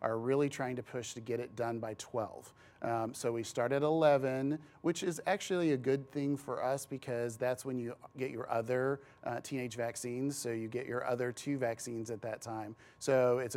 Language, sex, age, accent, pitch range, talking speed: English, male, 40-59, American, 115-135 Hz, 210 wpm